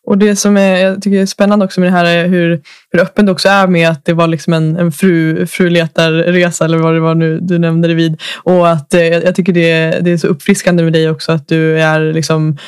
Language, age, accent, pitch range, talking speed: Swedish, 20-39, native, 160-180 Hz, 255 wpm